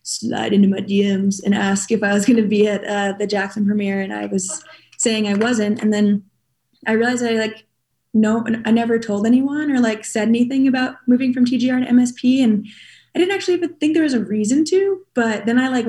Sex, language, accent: female, English, American